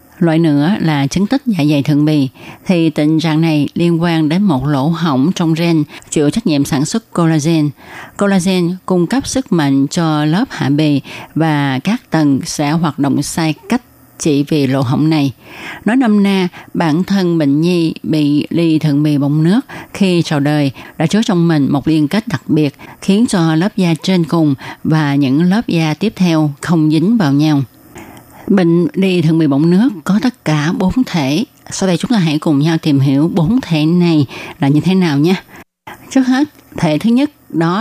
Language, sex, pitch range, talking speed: Vietnamese, female, 150-185 Hz, 195 wpm